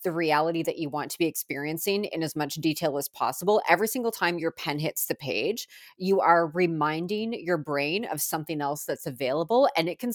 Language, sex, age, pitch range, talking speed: English, female, 30-49, 155-200 Hz, 205 wpm